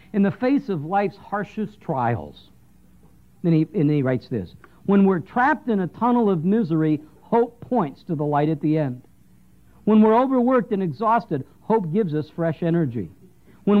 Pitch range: 160-220 Hz